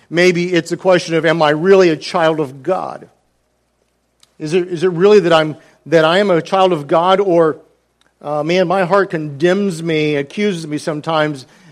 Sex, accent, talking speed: male, American, 185 wpm